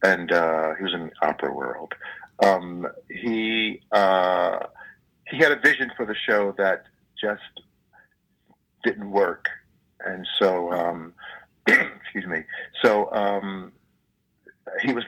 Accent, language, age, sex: American, English, 50-69, male